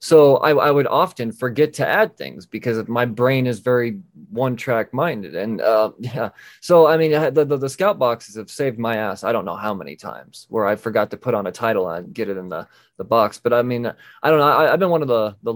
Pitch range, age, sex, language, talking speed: 115-145 Hz, 20-39, male, English, 250 wpm